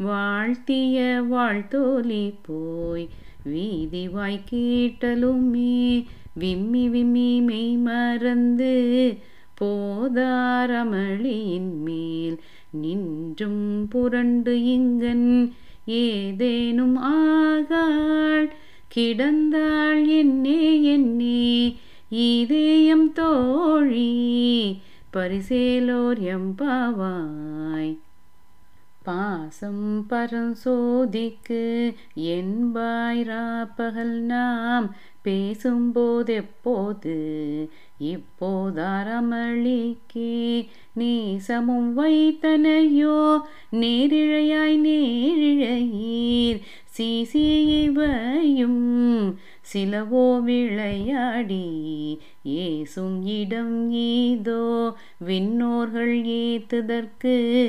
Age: 30-49